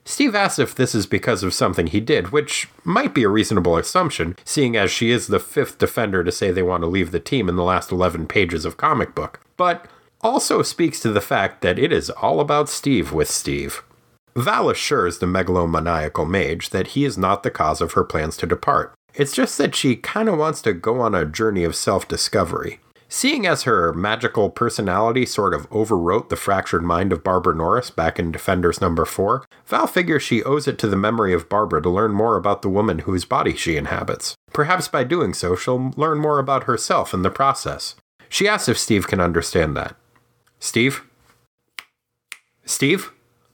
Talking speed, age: 195 wpm, 30-49